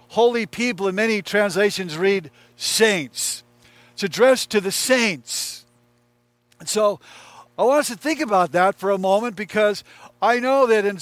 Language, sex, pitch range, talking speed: English, male, 170-230 Hz, 160 wpm